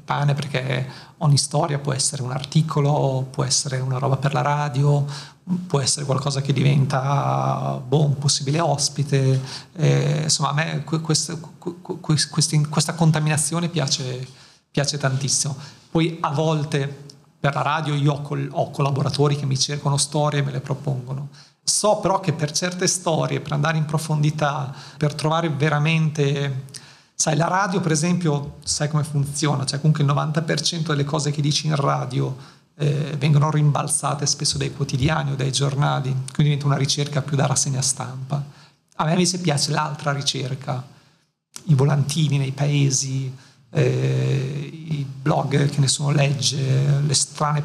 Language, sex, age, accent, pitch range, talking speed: Italian, male, 40-59, native, 140-155 Hz, 145 wpm